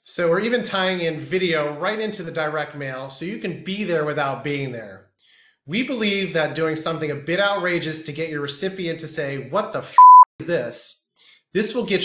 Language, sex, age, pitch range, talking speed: English, male, 30-49, 145-185 Hz, 200 wpm